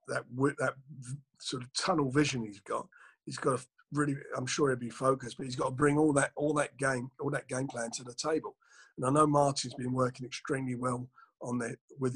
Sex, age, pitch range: male, 50-69, 125-145 Hz